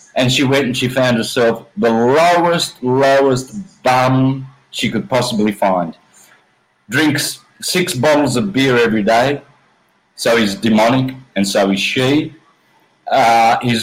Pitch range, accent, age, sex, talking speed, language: 110-140 Hz, Australian, 40-59, male, 135 wpm, English